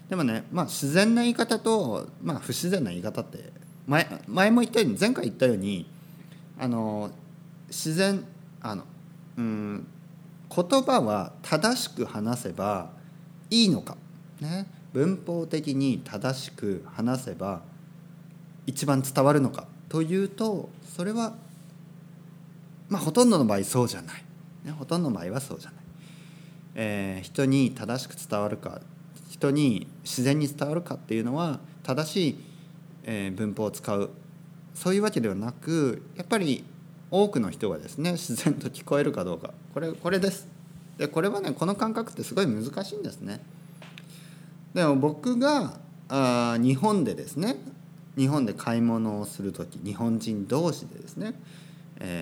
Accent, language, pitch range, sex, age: native, Japanese, 130-170 Hz, male, 40-59